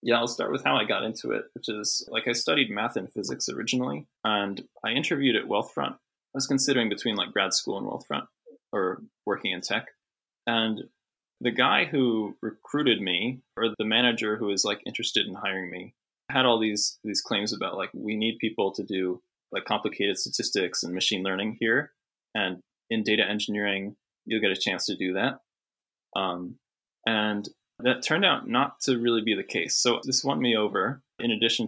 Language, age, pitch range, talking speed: English, 20-39, 100-120 Hz, 190 wpm